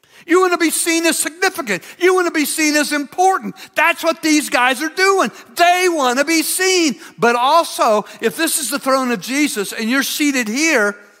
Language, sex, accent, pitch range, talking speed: English, male, American, 235-315 Hz, 205 wpm